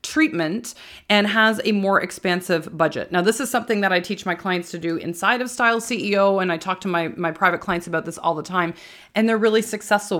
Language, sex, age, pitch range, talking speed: English, female, 30-49, 180-220 Hz, 230 wpm